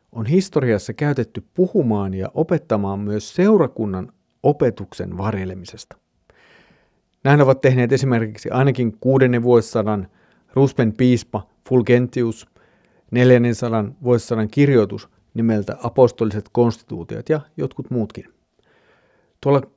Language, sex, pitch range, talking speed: Finnish, male, 105-145 Hz, 85 wpm